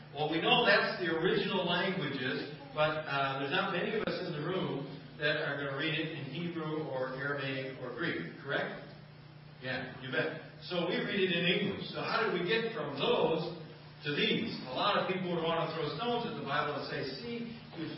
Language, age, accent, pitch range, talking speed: English, 40-59, American, 150-190 Hz, 215 wpm